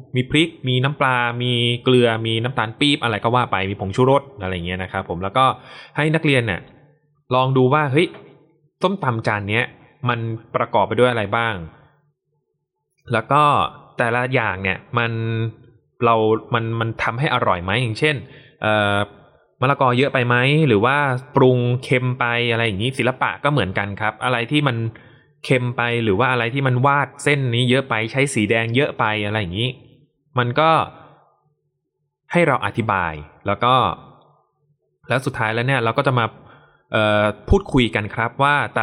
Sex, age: male, 20-39